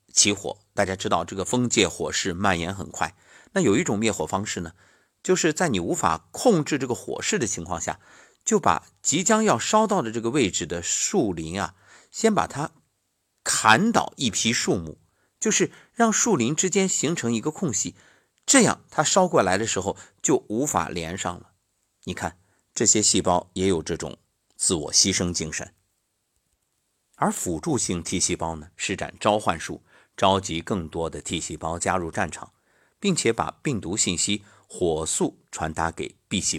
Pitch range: 85-115 Hz